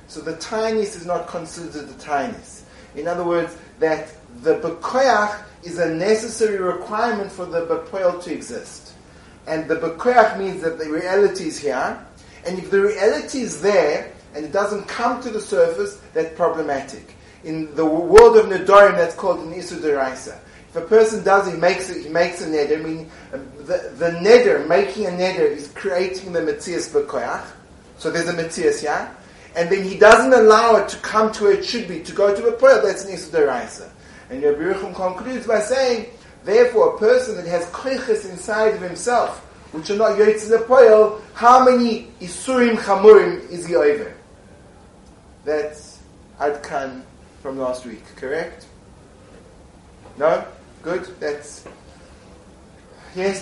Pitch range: 160-225 Hz